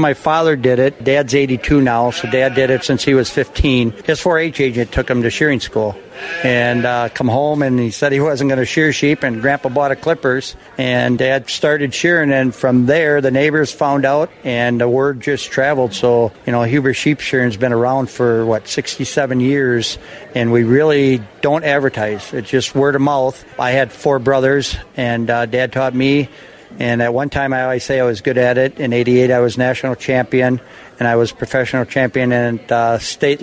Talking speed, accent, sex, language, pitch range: 205 wpm, American, male, English, 120-140 Hz